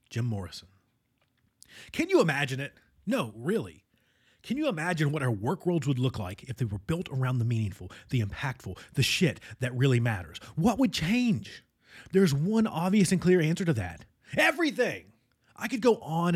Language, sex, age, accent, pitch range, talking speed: English, male, 30-49, American, 120-180 Hz, 175 wpm